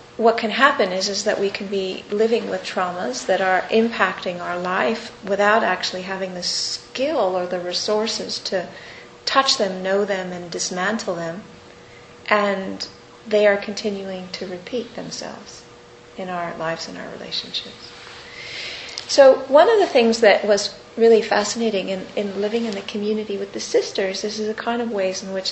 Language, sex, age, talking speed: English, female, 40-59, 170 wpm